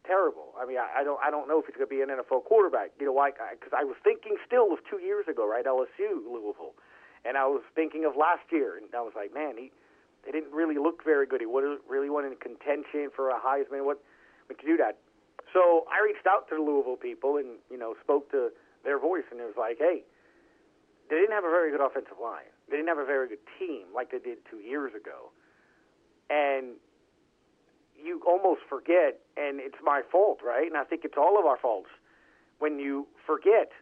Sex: male